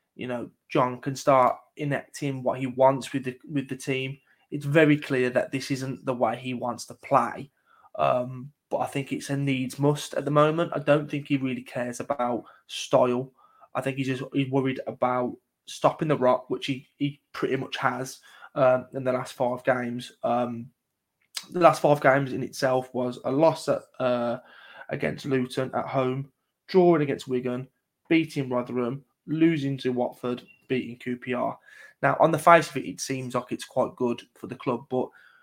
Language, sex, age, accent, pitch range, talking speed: English, male, 20-39, British, 125-145 Hz, 185 wpm